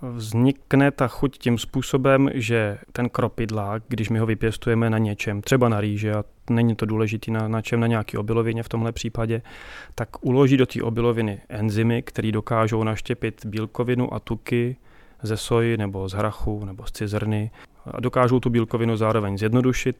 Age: 30-49